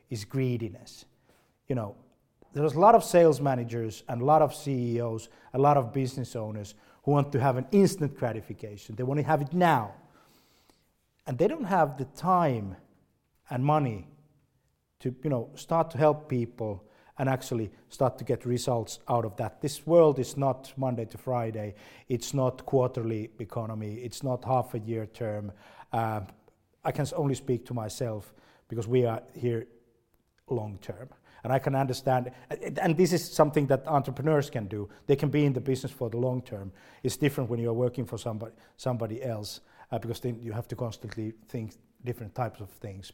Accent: native